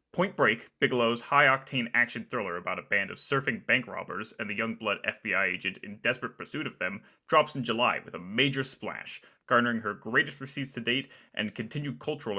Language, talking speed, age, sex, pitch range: English, 190 wpm, 30-49, male, 110-140 Hz